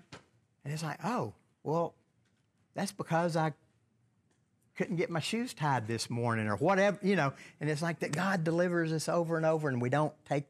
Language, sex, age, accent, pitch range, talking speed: English, male, 50-69, American, 115-150 Hz, 190 wpm